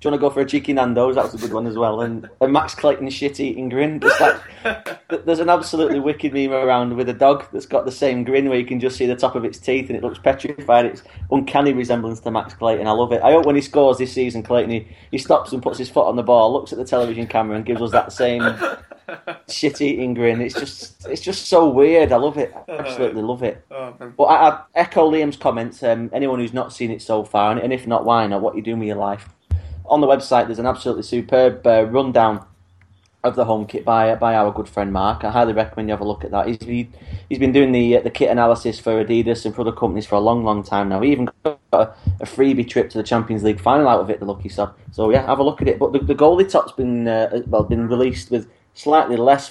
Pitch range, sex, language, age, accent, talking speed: 110-135 Hz, male, English, 30-49, British, 265 wpm